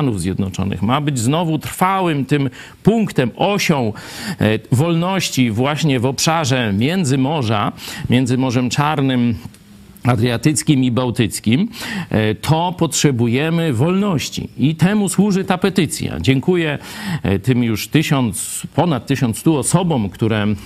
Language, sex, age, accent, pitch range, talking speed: Polish, male, 50-69, native, 120-165 Hz, 105 wpm